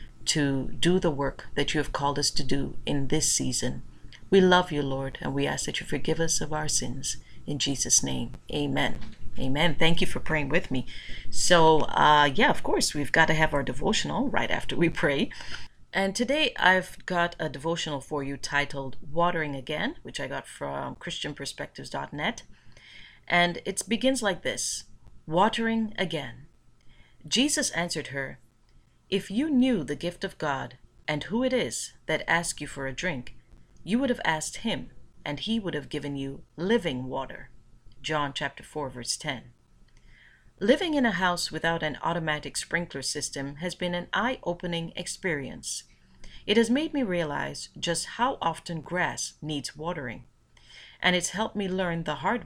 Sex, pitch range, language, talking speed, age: female, 135-180 Hz, English, 170 wpm, 40-59